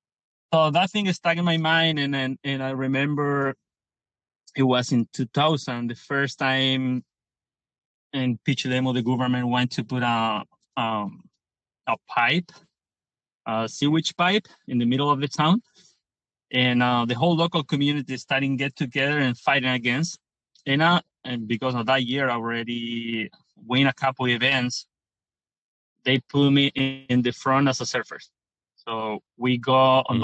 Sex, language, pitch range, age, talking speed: male, English, 120-140 Hz, 30-49, 160 wpm